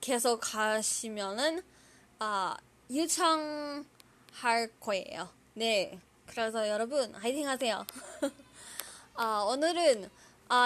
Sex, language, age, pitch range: female, Korean, 20-39, 215-310 Hz